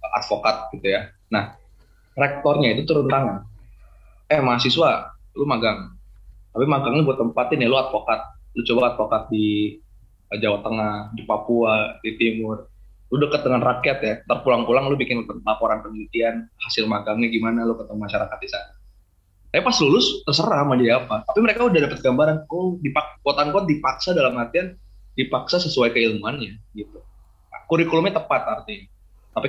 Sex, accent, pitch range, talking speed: male, native, 105-135 Hz, 155 wpm